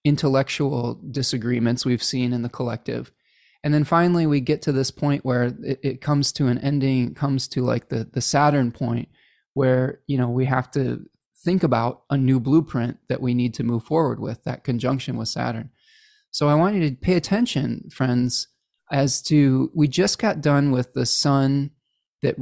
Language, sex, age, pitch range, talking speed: English, male, 20-39, 120-145 Hz, 185 wpm